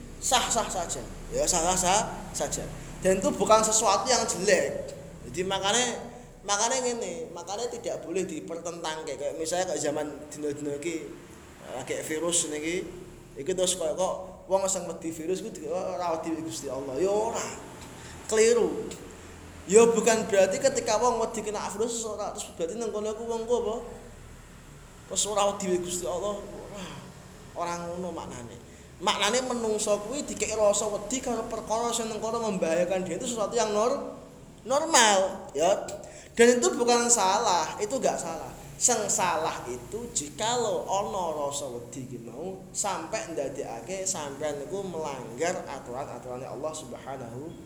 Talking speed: 140 wpm